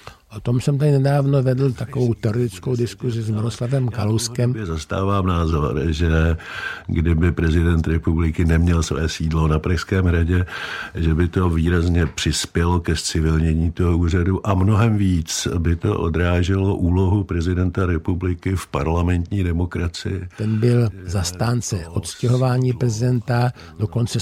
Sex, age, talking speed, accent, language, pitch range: male, 60-79, 125 wpm, native, Czech, 100-125 Hz